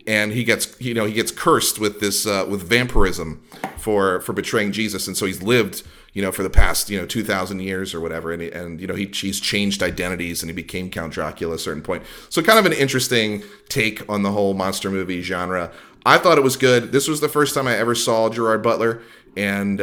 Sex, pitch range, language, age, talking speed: male, 95-120 Hz, English, 30-49, 240 wpm